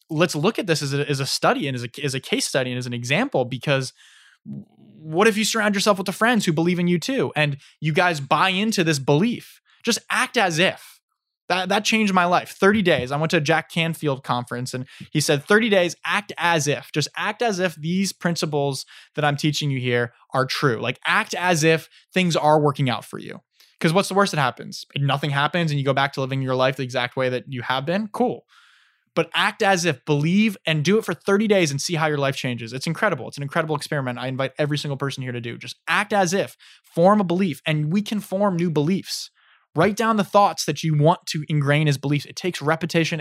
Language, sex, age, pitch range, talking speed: English, male, 10-29, 140-175 Hz, 240 wpm